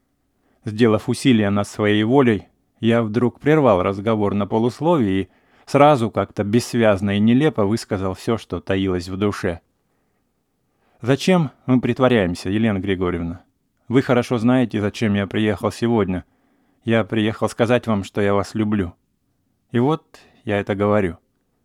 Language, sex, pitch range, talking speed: English, male, 100-125 Hz, 135 wpm